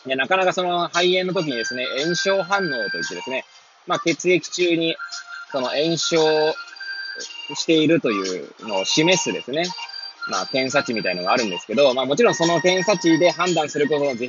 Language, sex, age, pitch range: Japanese, male, 20-39, 125-190 Hz